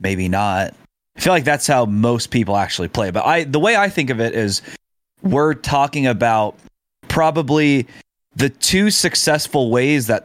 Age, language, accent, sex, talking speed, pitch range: 20-39, English, American, male, 170 wpm, 95-125 Hz